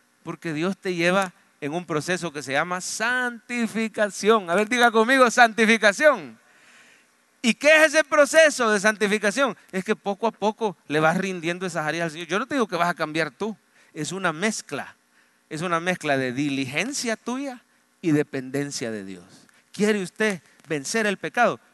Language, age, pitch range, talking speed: English, 40-59, 150-220 Hz, 170 wpm